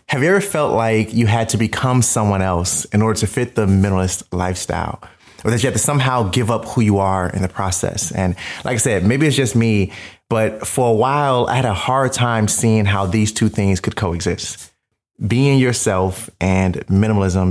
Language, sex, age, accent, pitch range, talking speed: English, male, 30-49, American, 100-120 Hz, 205 wpm